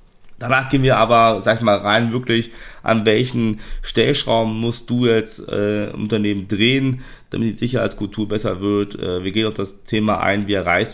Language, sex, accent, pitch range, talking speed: German, male, German, 100-120 Hz, 175 wpm